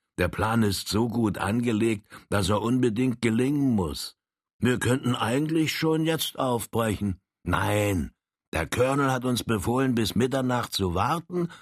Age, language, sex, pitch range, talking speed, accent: 60-79, German, male, 95-135 Hz, 140 wpm, German